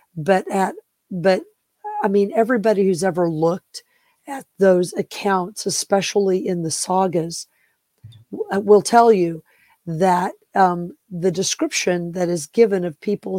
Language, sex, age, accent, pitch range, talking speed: English, female, 50-69, American, 180-215 Hz, 125 wpm